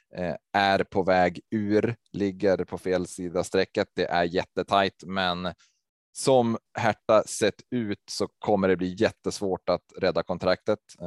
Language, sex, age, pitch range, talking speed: Swedish, male, 20-39, 95-120 Hz, 135 wpm